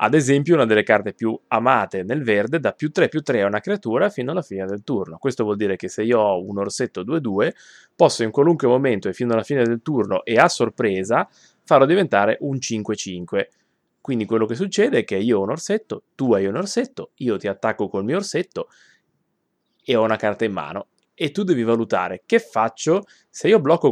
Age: 20-39